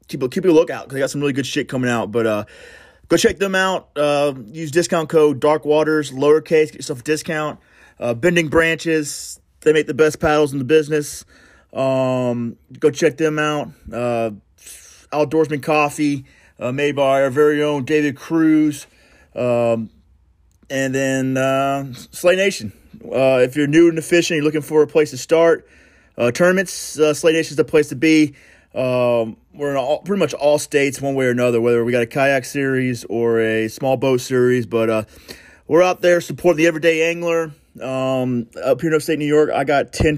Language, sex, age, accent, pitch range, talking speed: English, male, 30-49, American, 125-155 Hz, 195 wpm